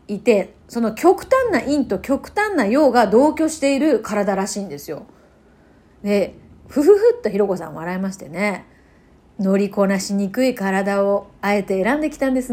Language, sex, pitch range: Japanese, female, 200-285 Hz